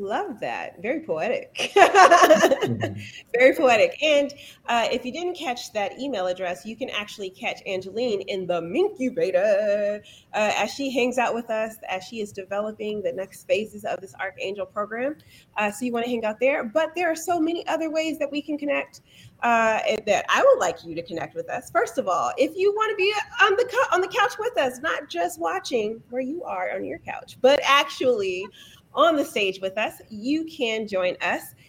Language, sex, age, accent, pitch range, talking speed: English, female, 30-49, American, 210-305 Hz, 200 wpm